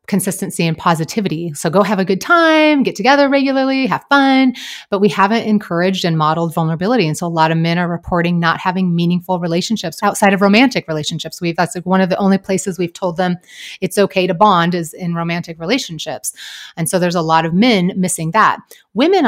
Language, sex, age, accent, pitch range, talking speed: English, female, 30-49, American, 170-225 Hz, 205 wpm